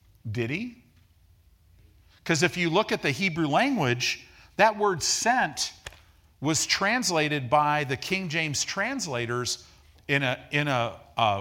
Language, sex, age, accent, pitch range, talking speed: English, male, 50-69, American, 90-140 Hz, 130 wpm